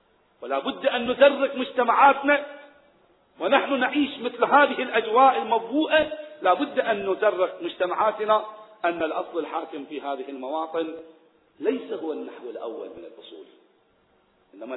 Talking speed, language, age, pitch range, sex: 120 wpm, Arabic, 40-59, 180-290 Hz, male